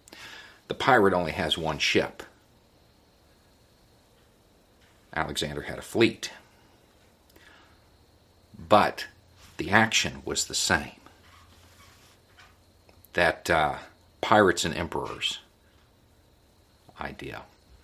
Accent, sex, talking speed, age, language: American, male, 75 wpm, 50-69, English